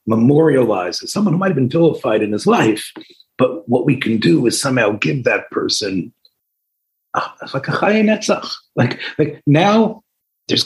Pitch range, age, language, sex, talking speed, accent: 115-190 Hz, 40-59, English, male, 150 wpm, American